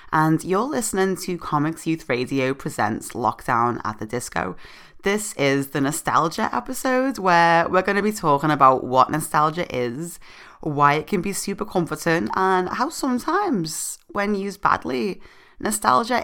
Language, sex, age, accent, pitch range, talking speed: English, female, 20-39, British, 135-185 Hz, 150 wpm